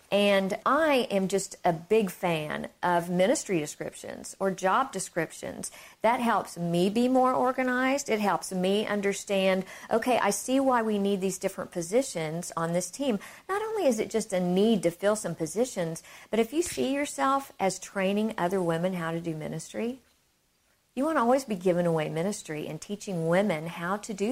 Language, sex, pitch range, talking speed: English, female, 175-220 Hz, 180 wpm